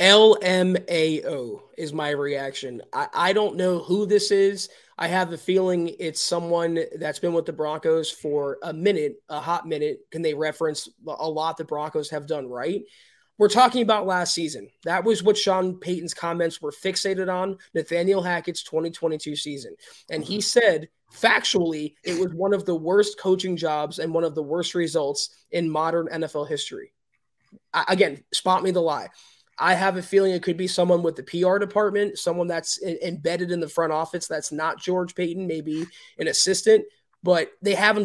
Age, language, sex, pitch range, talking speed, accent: 20-39, English, male, 165-190 Hz, 180 wpm, American